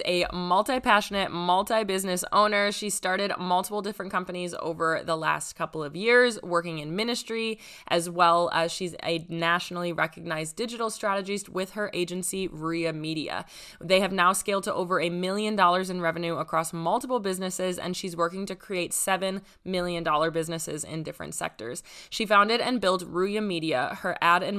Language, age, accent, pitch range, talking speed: English, 20-39, American, 170-200 Hz, 170 wpm